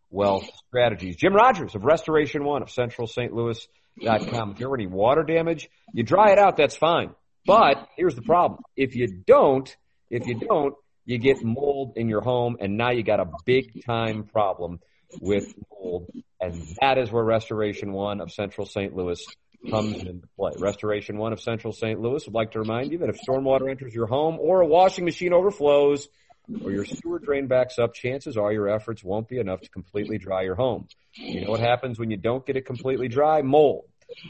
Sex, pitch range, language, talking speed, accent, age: male, 100-135 Hz, English, 200 wpm, American, 40-59